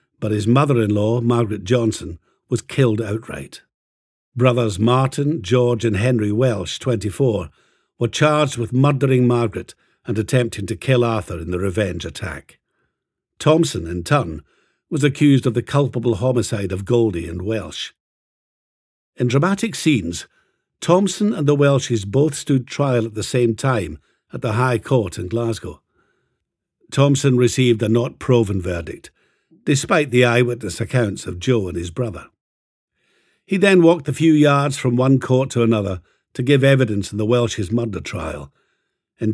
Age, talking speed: 60-79, 145 wpm